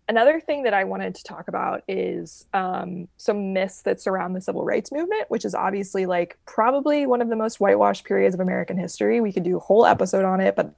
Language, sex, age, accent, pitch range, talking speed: English, female, 20-39, American, 190-260 Hz, 230 wpm